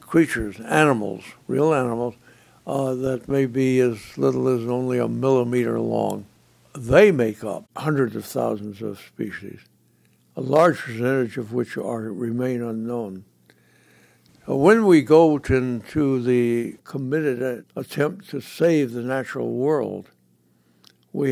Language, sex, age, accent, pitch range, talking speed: English, male, 60-79, American, 115-135 Hz, 125 wpm